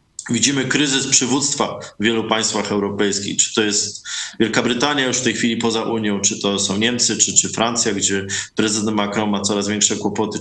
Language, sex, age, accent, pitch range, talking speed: Polish, male, 20-39, native, 105-130 Hz, 185 wpm